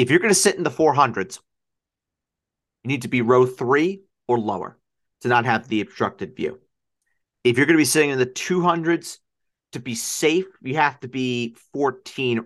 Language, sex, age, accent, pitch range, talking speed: English, male, 40-59, American, 110-140 Hz, 190 wpm